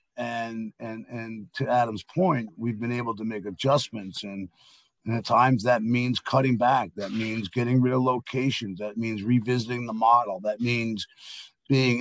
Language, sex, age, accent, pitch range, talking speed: English, male, 50-69, American, 110-130 Hz, 170 wpm